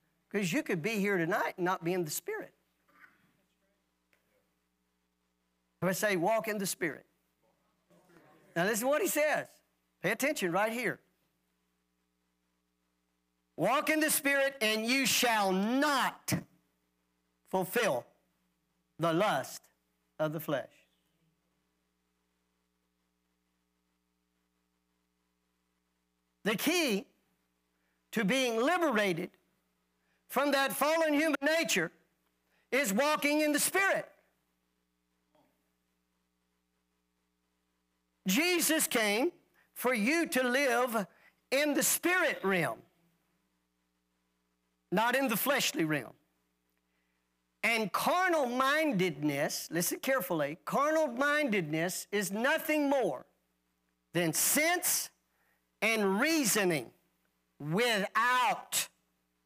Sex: male